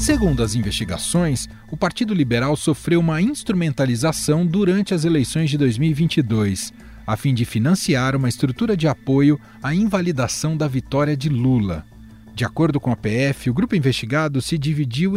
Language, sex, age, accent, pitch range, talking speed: Portuguese, male, 40-59, Brazilian, 115-165 Hz, 150 wpm